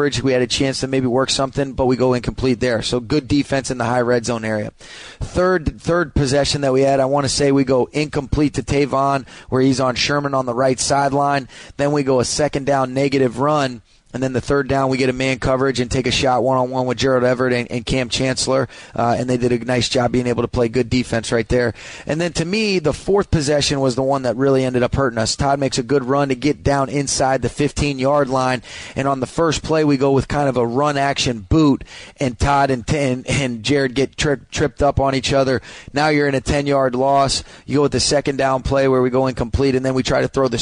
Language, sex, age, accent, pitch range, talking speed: English, male, 30-49, American, 125-140 Hz, 250 wpm